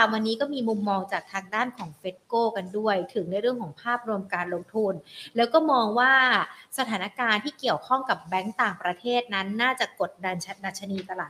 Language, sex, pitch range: Thai, female, 200-255 Hz